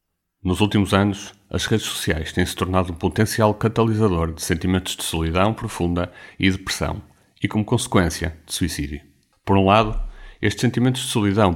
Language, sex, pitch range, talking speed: Portuguese, male, 90-105 Hz, 160 wpm